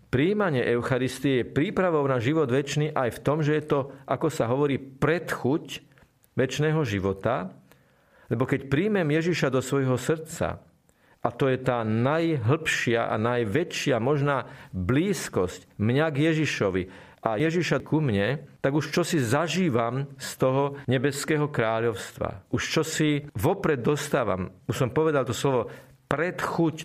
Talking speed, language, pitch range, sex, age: 140 wpm, Slovak, 115-150 Hz, male, 50-69